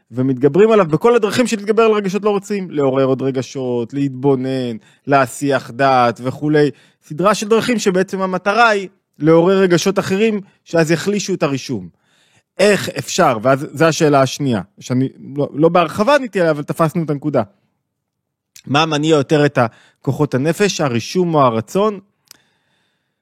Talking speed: 135 wpm